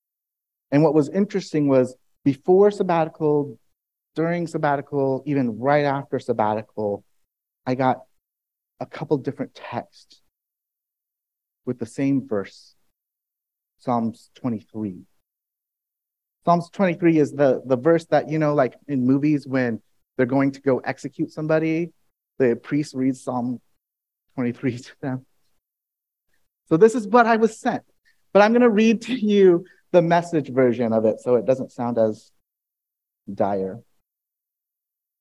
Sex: male